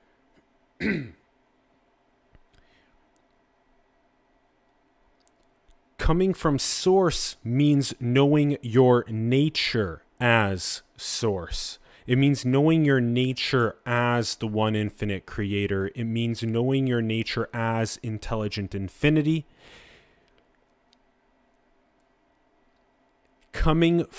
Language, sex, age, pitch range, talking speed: English, male, 30-49, 115-140 Hz, 70 wpm